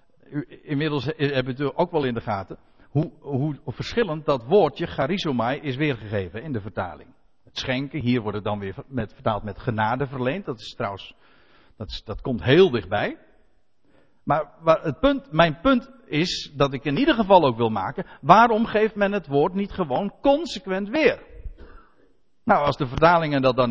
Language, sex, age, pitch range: Dutch, male, 60-79, 130-215 Hz